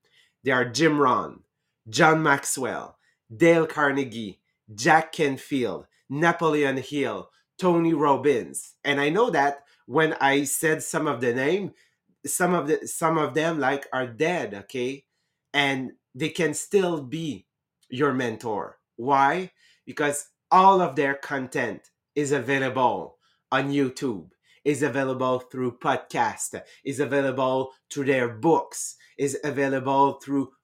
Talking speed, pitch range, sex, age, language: 120 wpm, 135-160 Hz, male, 30-49, English